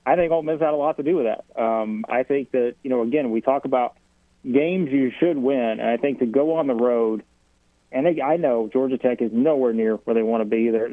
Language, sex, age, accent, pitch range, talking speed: English, male, 30-49, American, 115-130 Hz, 260 wpm